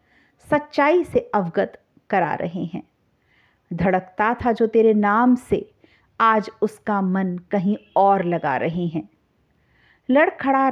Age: 50-69